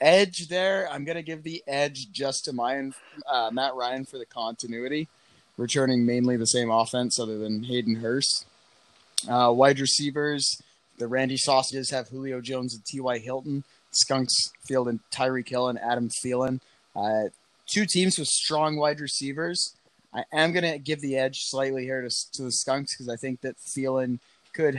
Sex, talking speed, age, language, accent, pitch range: male, 170 wpm, 20-39, English, American, 120-140 Hz